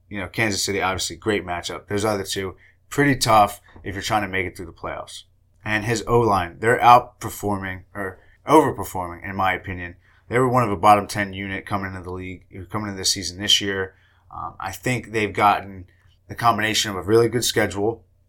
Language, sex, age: English, male, 20-39